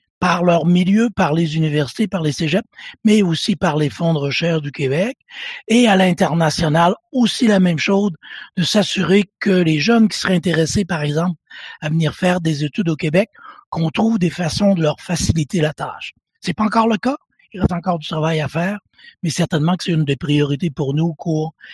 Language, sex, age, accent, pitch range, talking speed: French, male, 60-79, French, 155-200 Hz, 205 wpm